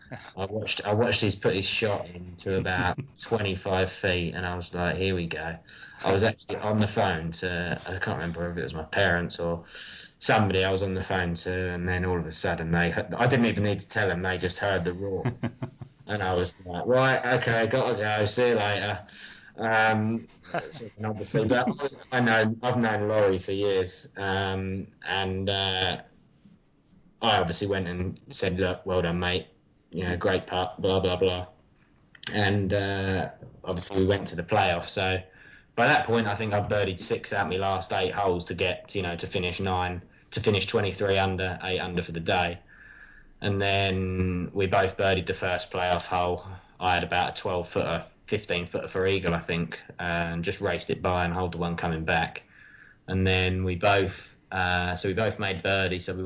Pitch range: 90-105 Hz